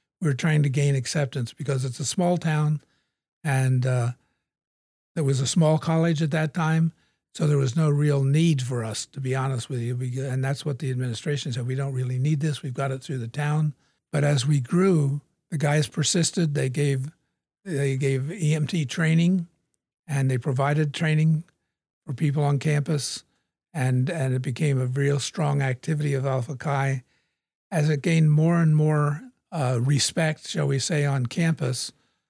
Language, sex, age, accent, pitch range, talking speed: English, male, 50-69, American, 135-155 Hz, 180 wpm